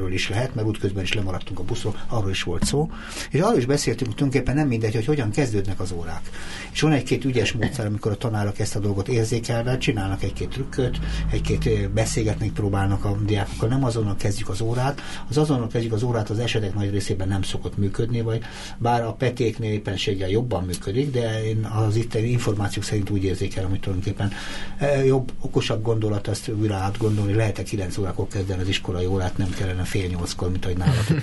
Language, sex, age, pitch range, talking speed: Hungarian, male, 60-79, 100-125 Hz, 195 wpm